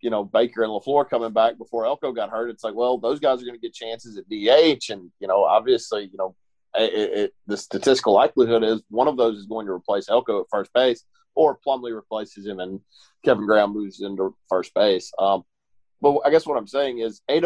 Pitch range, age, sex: 105-125 Hz, 40-59, male